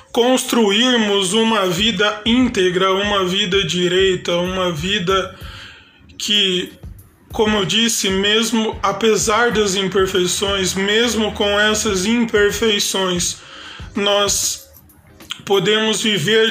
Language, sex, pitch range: Portuguese, male, 190-220 Hz